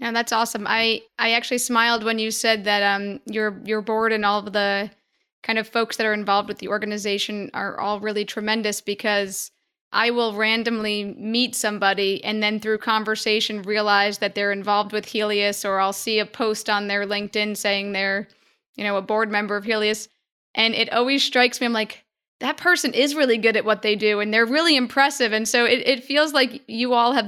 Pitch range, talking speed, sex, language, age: 205-230 Hz, 205 wpm, female, English, 20-39